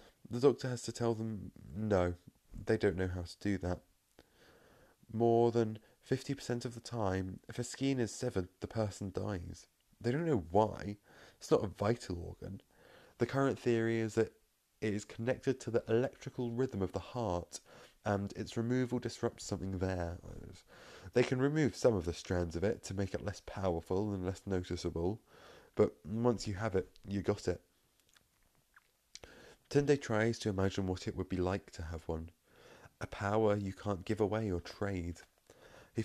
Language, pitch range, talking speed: English, 95-115 Hz, 175 wpm